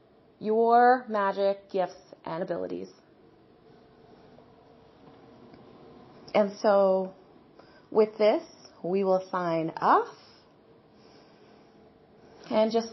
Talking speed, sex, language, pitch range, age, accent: 70 wpm, female, English, 190-250 Hz, 30-49, American